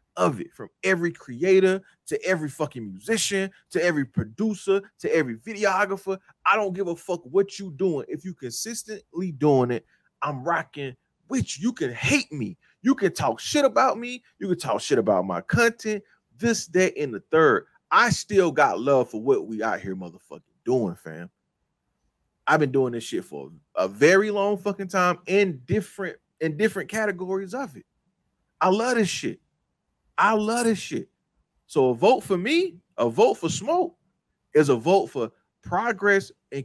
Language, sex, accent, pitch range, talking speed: English, male, American, 145-205 Hz, 175 wpm